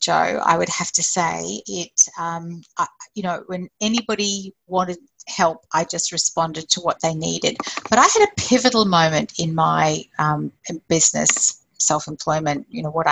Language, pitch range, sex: English, 170-220 Hz, female